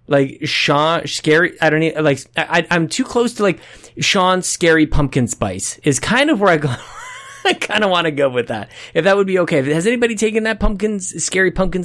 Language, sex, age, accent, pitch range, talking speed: English, male, 20-39, American, 130-190 Hz, 220 wpm